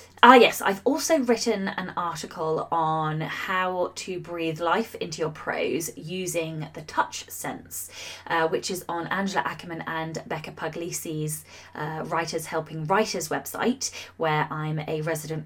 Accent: British